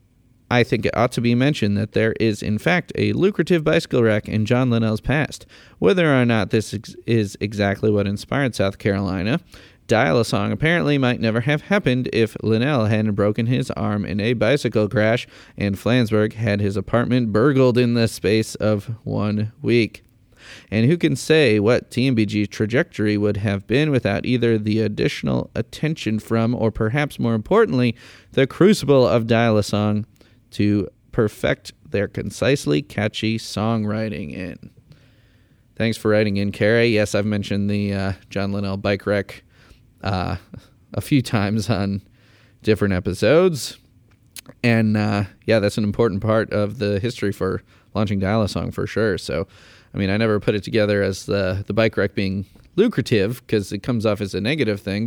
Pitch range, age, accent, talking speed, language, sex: 105-125 Hz, 30-49, American, 165 wpm, English, male